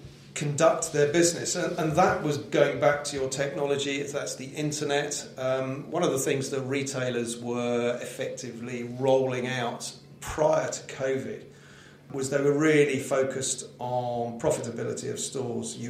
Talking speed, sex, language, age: 150 wpm, male, English, 40-59